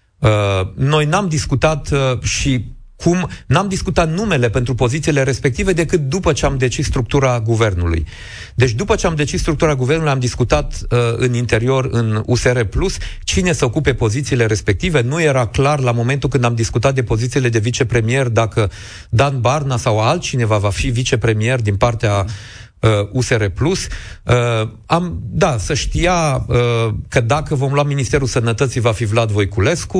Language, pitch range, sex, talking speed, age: Romanian, 115-140 Hz, male, 155 wpm, 40-59